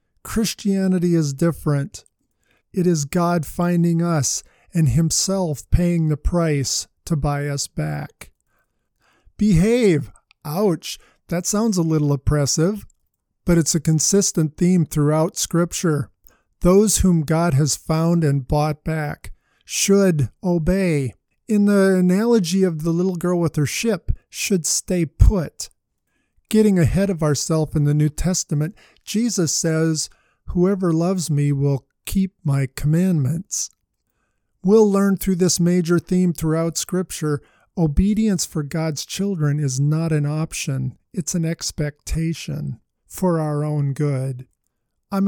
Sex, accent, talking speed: male, American, 125 wpm